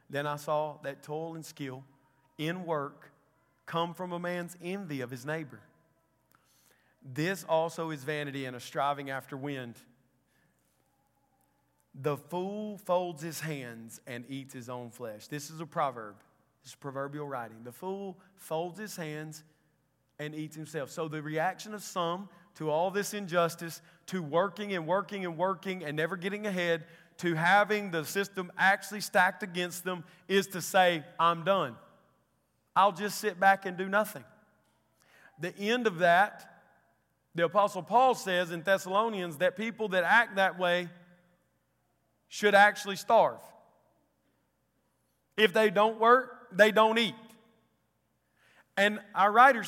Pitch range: 155-210 Hz